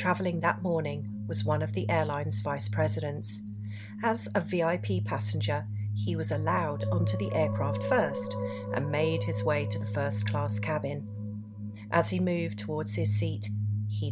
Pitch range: 105-125 Hz